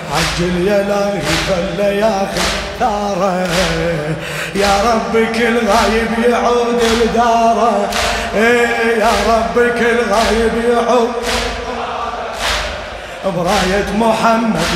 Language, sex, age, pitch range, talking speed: Arabic, male, 20-39, 200-240 Hz, 75 wpm